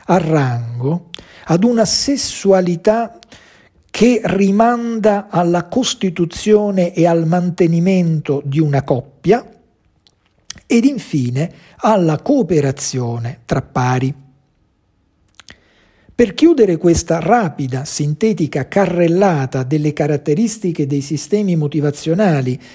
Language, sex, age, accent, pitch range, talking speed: Italian, male, 50-69, native, 135-190 Hz, 85 wpm